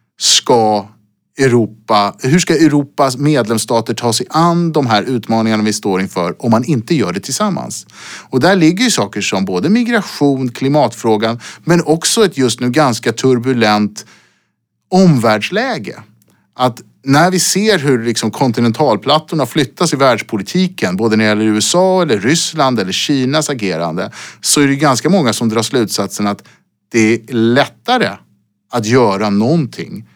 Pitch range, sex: 105-150 Hz, male